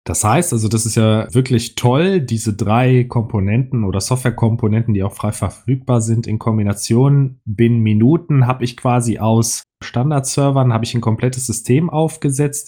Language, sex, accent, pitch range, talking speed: German, male, German, 110-130 Hz, 155 wpm